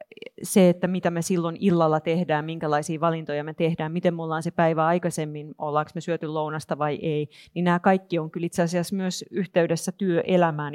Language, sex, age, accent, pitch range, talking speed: Finnish, female, 30-49, native, 155-190 Hz, 185 wpm